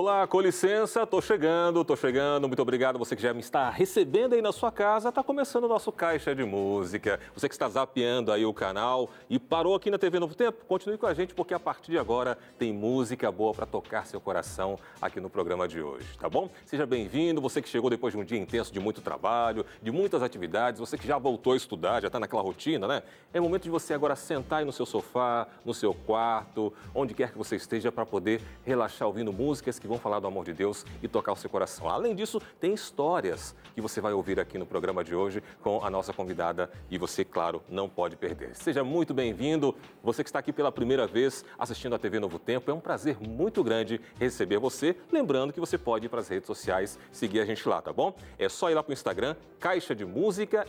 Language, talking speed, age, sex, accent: Portuguese, 230 wpm, 40-59, male, Brazilian